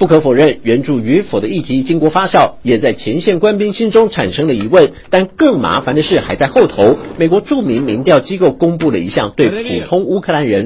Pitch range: 140-215 Hz